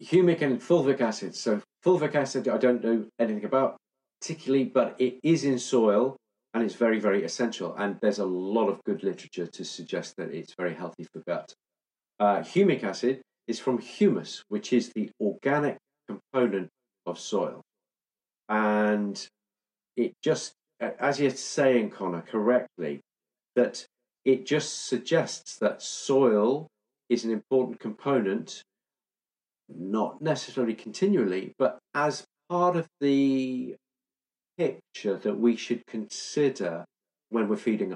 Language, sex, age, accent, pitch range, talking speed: English, male, 40-59, British, 105-140 Hz, 135 wpm